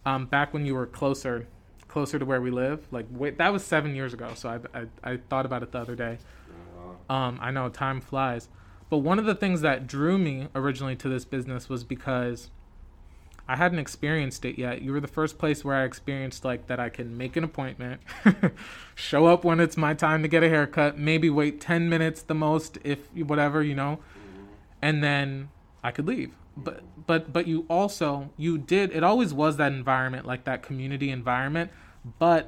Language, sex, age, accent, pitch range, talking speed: English, male, 20-39, American, 125-155 Hz, 200 wpm